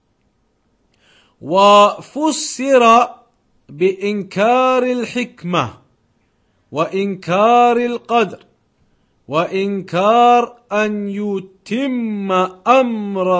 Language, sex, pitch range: English, male, 150-190 Hz